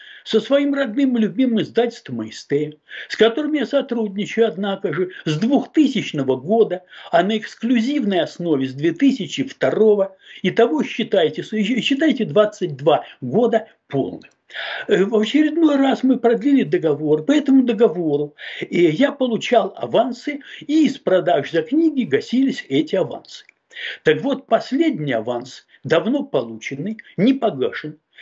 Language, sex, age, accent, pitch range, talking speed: Russian, male, 60-79, native, 190-260 Hz, 120 wpm